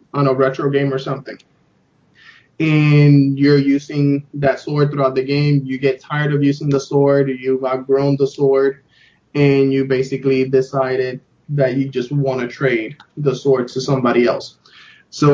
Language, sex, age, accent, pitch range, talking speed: English, male, 20-39, American, 135-145 Hz, 160 wpm